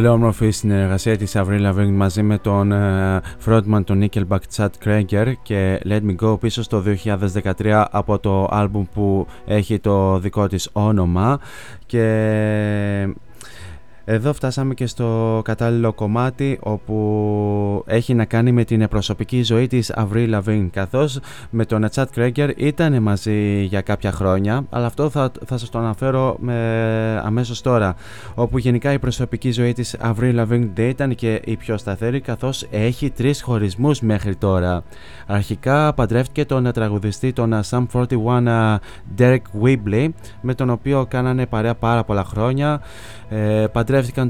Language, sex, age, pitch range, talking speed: Greek, male, 20-39, 105-120 Hz, 150 wpm